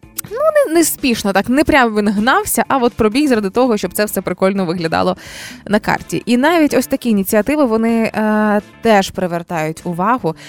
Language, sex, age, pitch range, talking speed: Ukrainian, female, 20-39, 195-260 Hz, 175 wpm